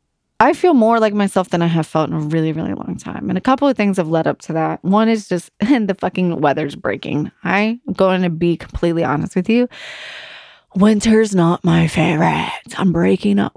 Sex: female